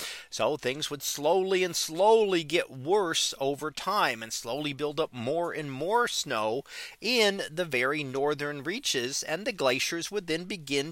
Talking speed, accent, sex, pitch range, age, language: 160 wpm, American, male, 140-215 Hz, 40-59, English